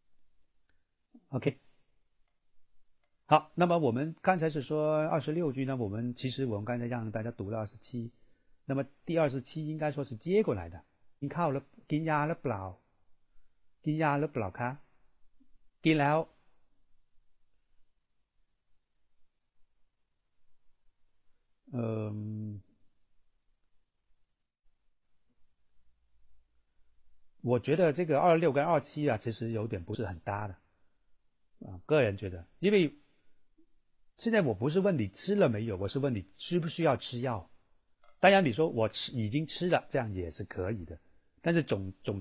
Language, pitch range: Chinese, 100-155 Hz